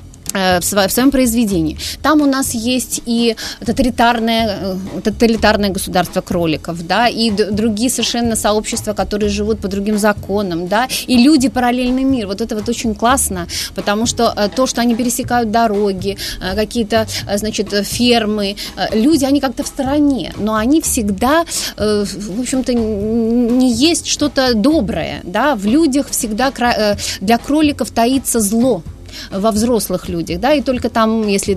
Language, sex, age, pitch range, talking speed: Russian, female, 20-39, 205-255 Hz, 135 wpm